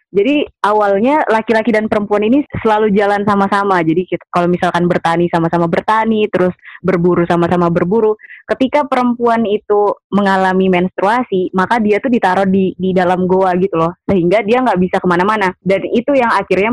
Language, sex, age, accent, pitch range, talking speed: Indonesian, female, 20-39, native, 180-215 Hz, 160 wpm